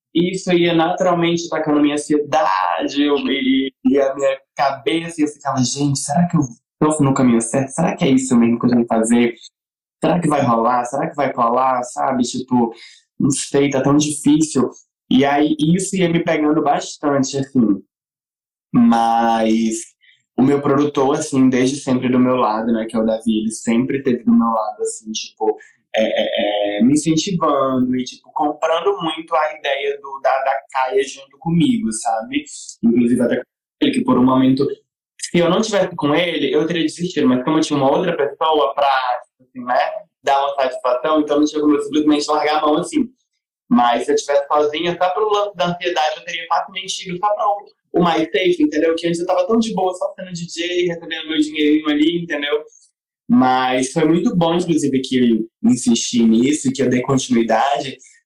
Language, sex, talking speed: Portuguese, male, 190 wpm